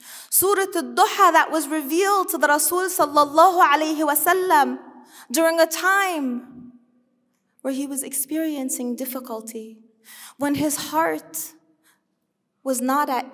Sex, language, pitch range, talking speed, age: female, English, 235-320 Hz, 105 wpm, 20-39